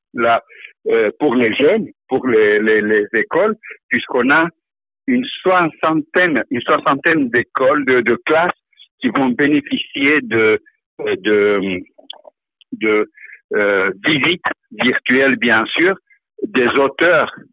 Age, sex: 60-79, male